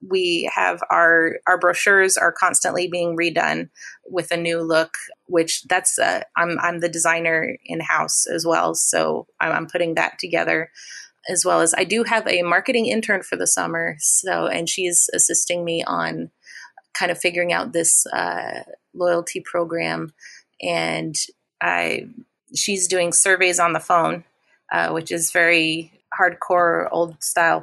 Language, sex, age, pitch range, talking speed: English, female, 30-49, 170-195 Hz, 155 wpm